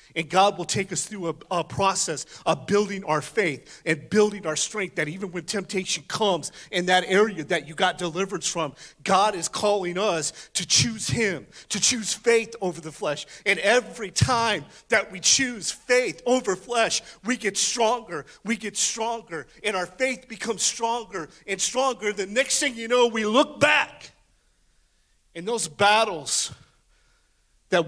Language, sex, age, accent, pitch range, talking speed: English, male, 40-59, American, 150-205 Hz, 165 wpm